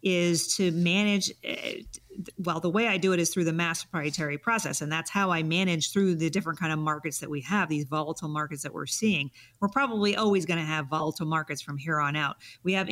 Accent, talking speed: American, 230 wpm